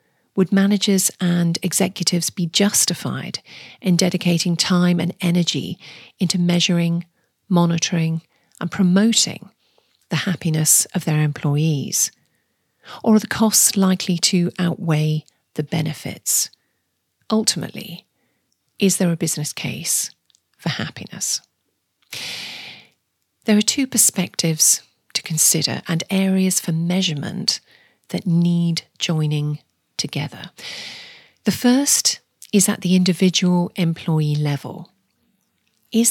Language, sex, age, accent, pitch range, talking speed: English, female, 40-59, British, 160-195 Hz, 100 wpm